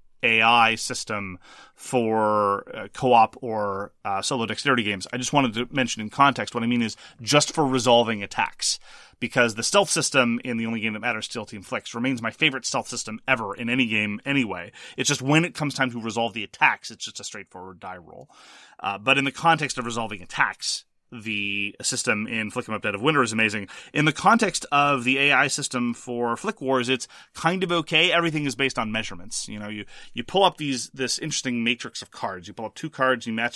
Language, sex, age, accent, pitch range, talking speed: English, male, 30-49, American, 115-135 Hz, 215 wpm